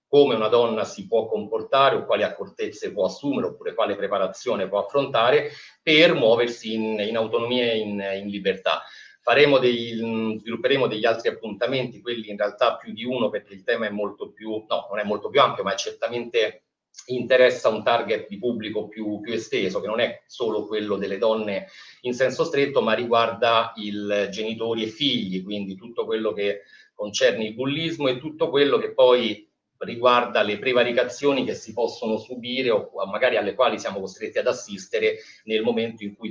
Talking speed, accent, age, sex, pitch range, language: 175 wpm, Italian, 40-59, male, 110-165 Hz, English